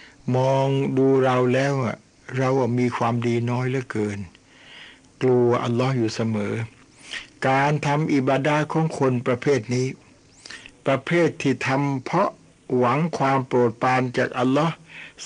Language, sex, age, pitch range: Thai, male, 60-79, 120-140 Hz